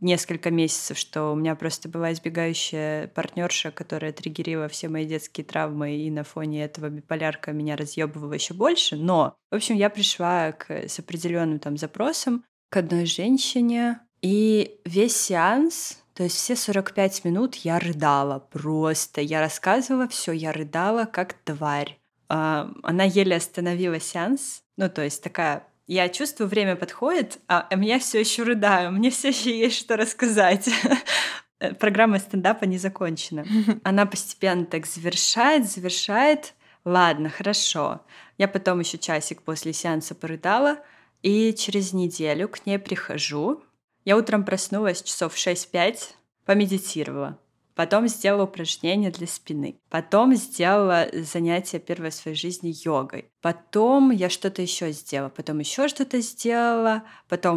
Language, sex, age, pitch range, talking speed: Russian, female, 20-39, 160-215 Hz, 135 wpm